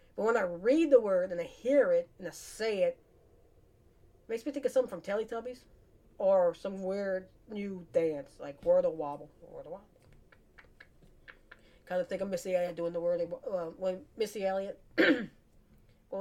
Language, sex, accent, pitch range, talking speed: English, female, American, 175-260 Hz, 180 wpm